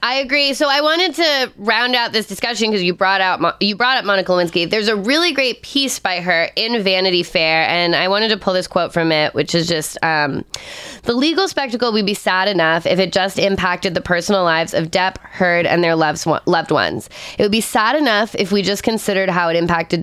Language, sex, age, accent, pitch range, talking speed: English, female, 20-39, American, 175-230 Hz, 235 wpm